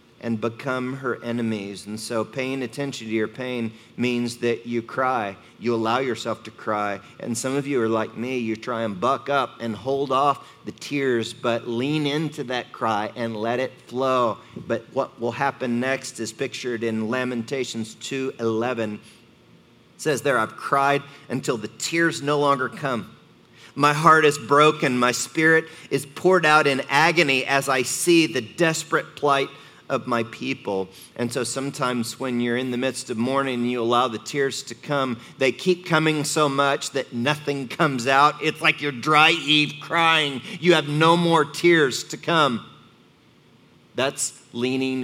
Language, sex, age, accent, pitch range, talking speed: English, male, 40-59, American, 115-140 Hz, 170 wpm